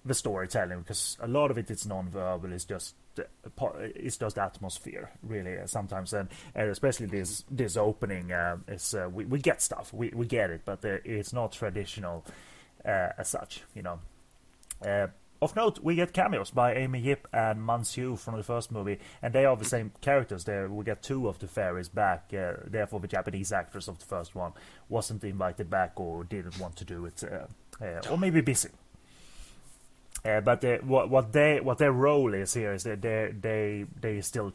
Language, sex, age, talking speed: English, male, 30-49, 200 wpm